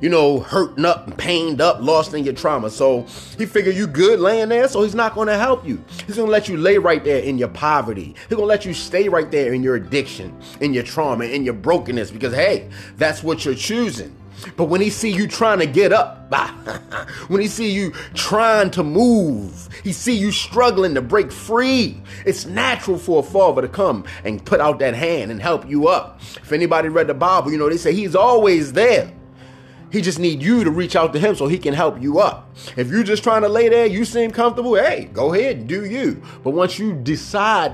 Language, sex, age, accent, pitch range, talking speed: English, male, 30-49, American, 140-215 Hz, 230 wpm